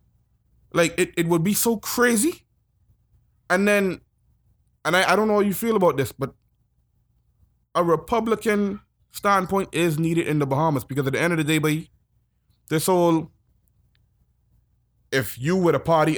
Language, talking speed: English, 160 wpm